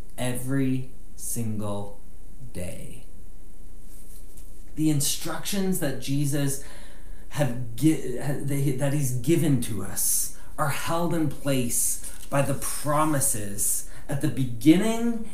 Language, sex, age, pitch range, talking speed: English, male, 30-49, 100-145 Hz, 90 wpm